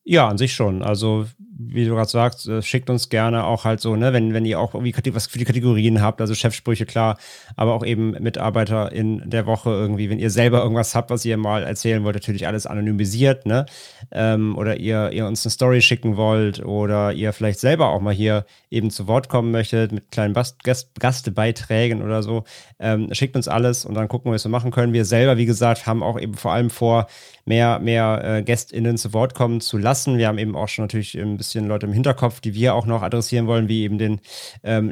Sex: male